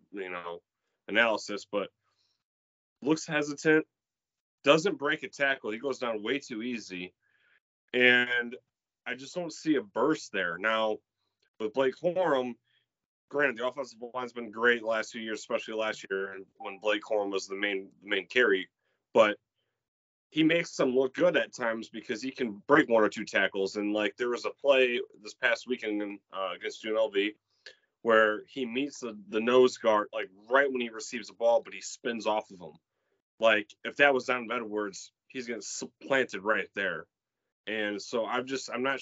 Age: 30-49